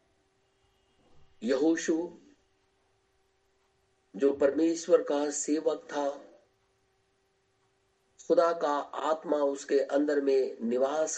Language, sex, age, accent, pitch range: Hindi, male, 50-69, native, 125-165 Hz